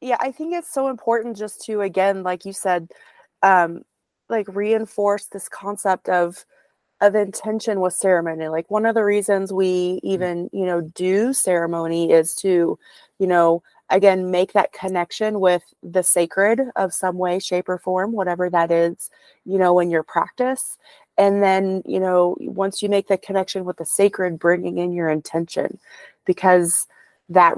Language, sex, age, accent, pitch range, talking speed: English, female, 30-49, American, 180-205 Hz, 165 wpm